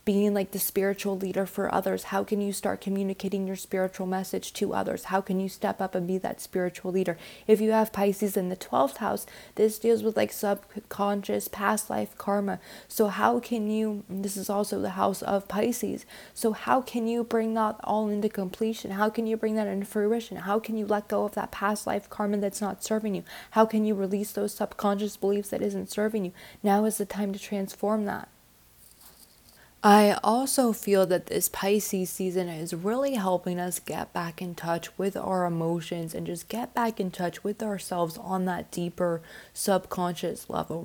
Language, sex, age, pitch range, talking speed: English, female, 20-39, 180-210 Hz, 195 wpm